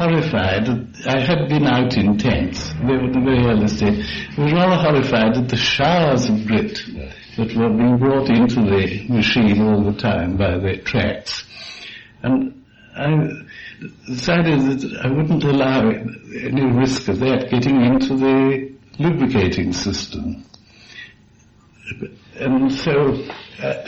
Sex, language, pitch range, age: male, English, 105-135 Hz, 60-79